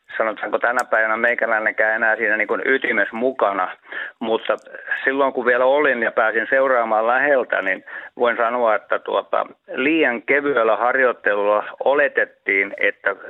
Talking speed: 130 wpm